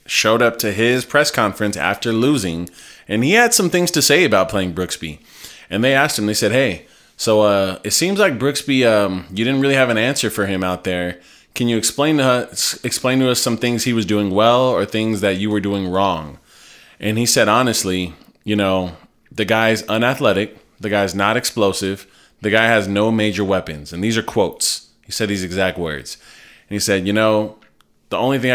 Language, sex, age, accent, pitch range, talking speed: English, male, 20-39, American, 95-115 Hz, 210 wpm